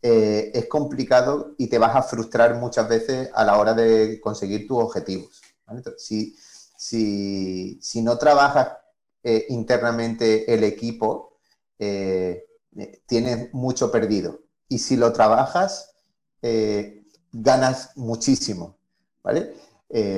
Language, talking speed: Spanish, 115 wpm